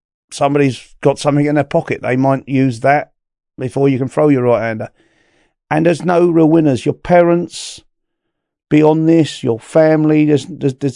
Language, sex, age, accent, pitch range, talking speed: English, male, 40-59, British, 135-160 Hz, 160 wpm